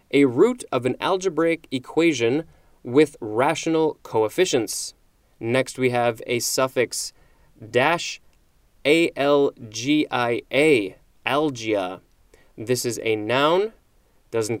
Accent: American